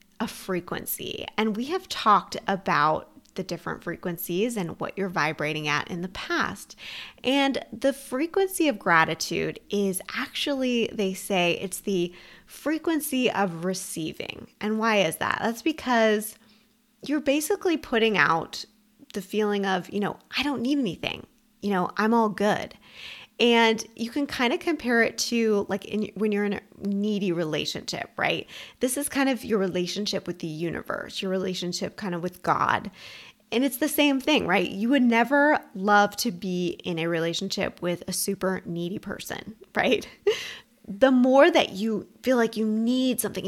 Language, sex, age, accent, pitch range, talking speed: English, female, 20-39, American, 190-255 Hz, 160 wpm